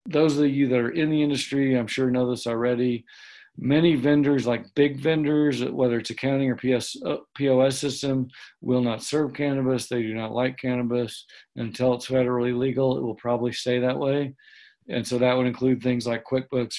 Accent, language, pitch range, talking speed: American, English, 120-135 Hz, 180 wpm